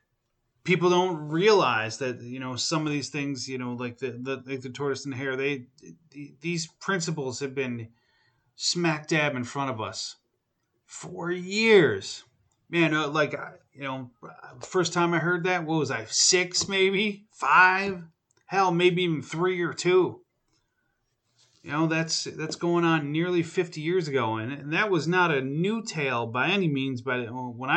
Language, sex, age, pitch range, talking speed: English, male, 30-49, 125-175 Hz, 175 wpm